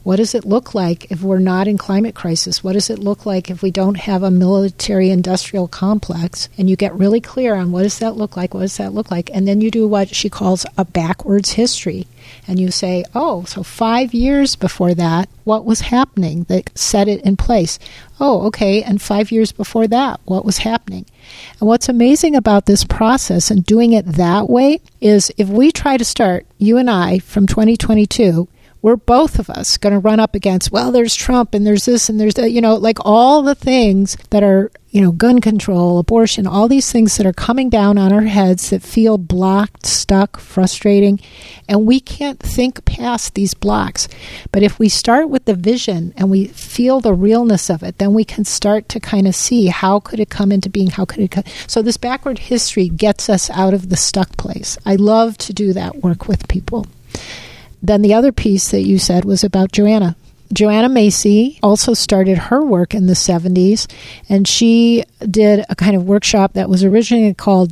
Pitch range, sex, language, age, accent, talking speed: 190-225 Hz, female, English, 50-69, American, 205 wpm